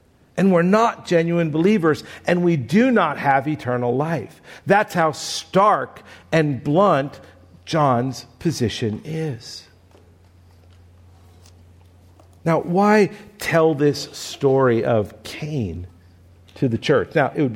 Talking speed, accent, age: 115 wpm, American, 50-69